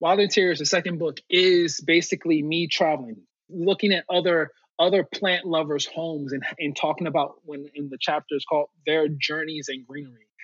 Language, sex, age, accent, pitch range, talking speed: English, male, 20-39, American, 145-170 Hz, 165 wpm